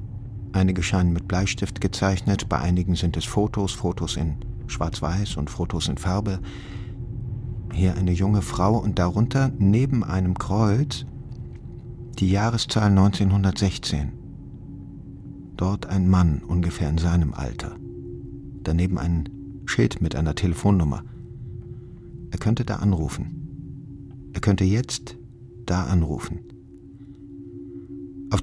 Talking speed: 110 wpm